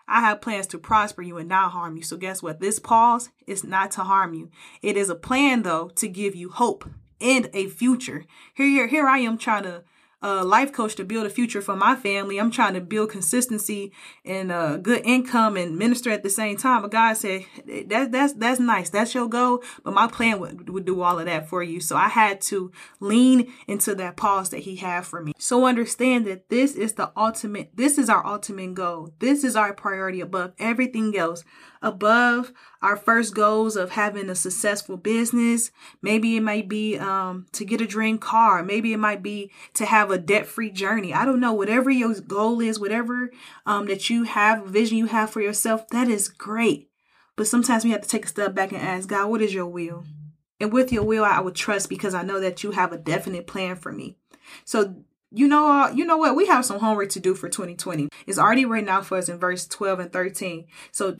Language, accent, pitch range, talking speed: English, American, 190-230 Hz, 220 wpm